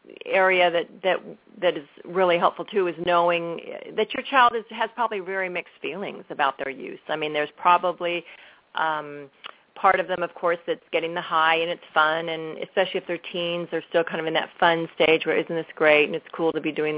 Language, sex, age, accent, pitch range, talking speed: English, female, 40-59, American, 155-190 Hz, 220 wpm